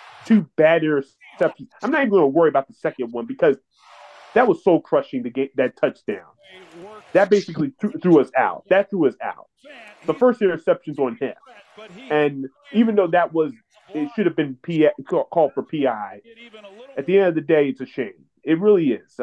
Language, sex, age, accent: English, male, 30-49, American